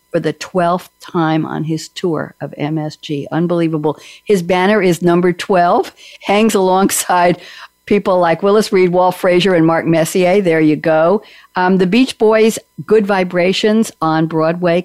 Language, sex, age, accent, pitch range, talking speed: English, female, 60-79, American, 160-195 Hz, 145 wpm